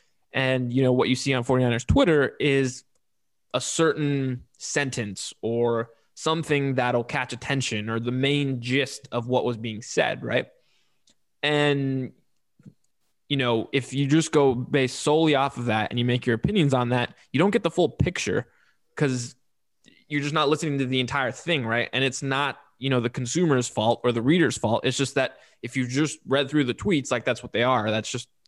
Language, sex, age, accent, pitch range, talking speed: English, male, 20-39, American, 120-145 Hz, 195 wpm